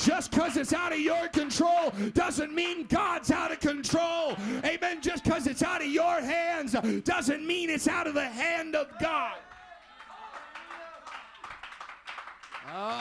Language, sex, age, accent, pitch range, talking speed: English, male, 40-59, American, 255-325 Hz, 145 wpm